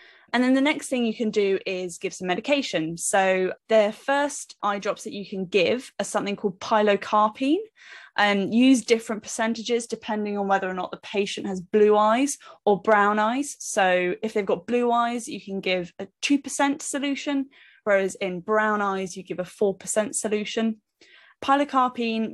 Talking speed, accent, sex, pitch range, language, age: 170 wpm, British, female, 195-240 Hz, English, 10-29